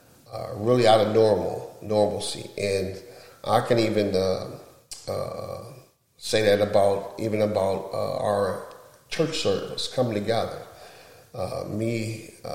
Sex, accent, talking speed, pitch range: male, American, 120 wpm, 100-120 Hz